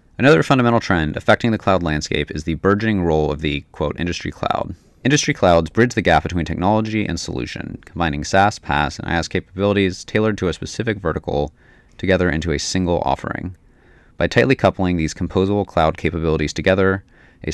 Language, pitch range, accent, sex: English, 75-100 Hz, American, male